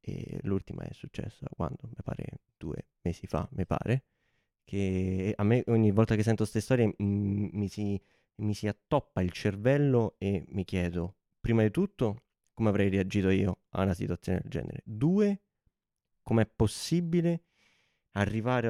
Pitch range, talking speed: 100-120 Hz, 150 wpm